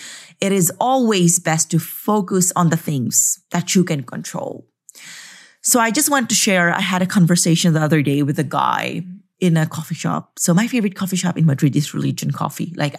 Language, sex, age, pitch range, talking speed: English, female, 30-49, 155-190 Hz, 205 wpm